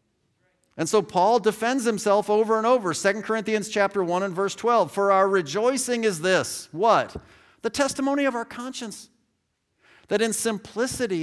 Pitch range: 165-235 Hz